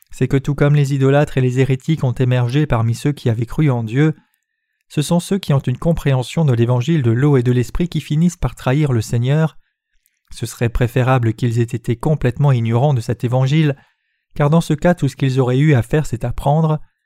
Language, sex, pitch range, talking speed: French, male, 120-150 Hz, 220 wpm